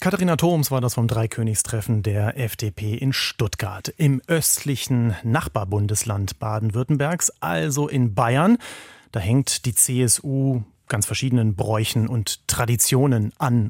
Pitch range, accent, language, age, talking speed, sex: 115-140 Hz, German, German, 30-49, 120 wpm, male